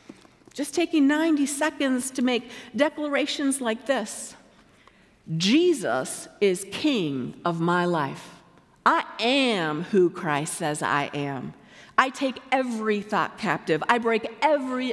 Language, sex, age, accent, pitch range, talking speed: English, female, 50-69, American, 195-285 Hz, 120 wpm